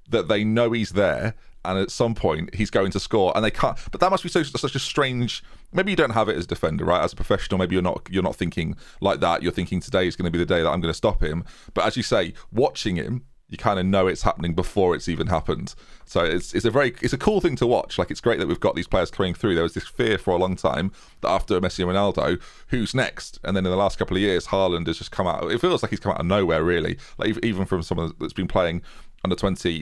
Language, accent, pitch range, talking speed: English, British, 90-115 Hz, 285 wpm